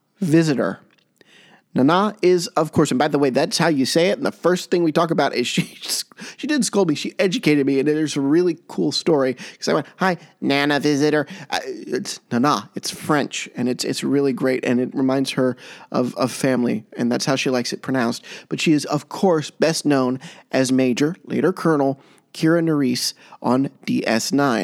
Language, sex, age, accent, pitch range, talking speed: English, male, 30-49, American, 135-185 Hz, 200 wpm